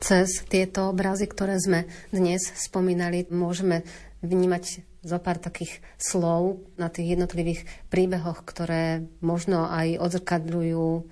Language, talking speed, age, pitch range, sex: Slovak, 115 wpm, 30-49, 165-180 Hz, female